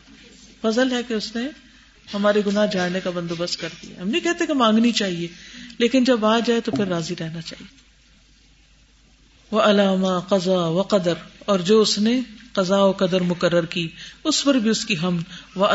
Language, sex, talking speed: Urdu, female, 180 wpm